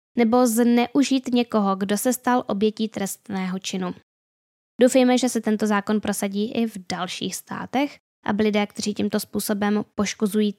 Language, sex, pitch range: Czech, female, 195-245 Hz